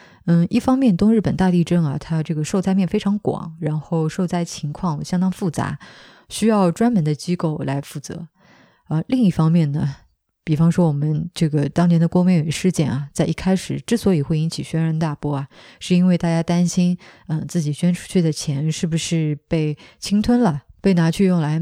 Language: Chinese